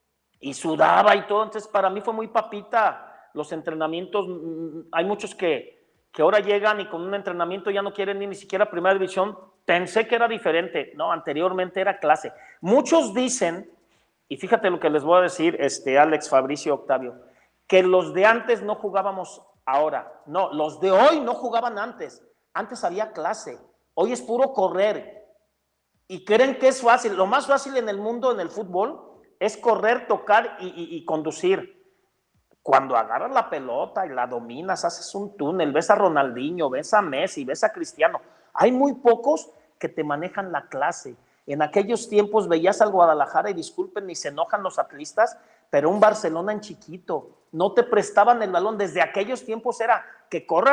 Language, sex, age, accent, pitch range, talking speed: Spanish, male, 40-59, Mexican, 175-230 Hz, 175 wpm